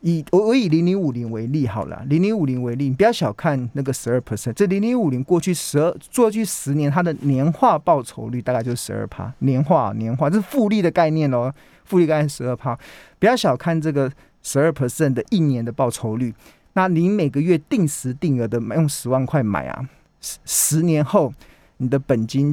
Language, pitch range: Chinese, 125-170 Hz